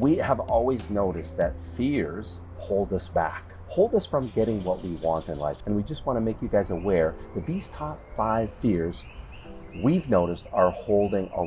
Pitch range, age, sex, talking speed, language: 85-115 Hz, 40-59, male, 195 wpm, English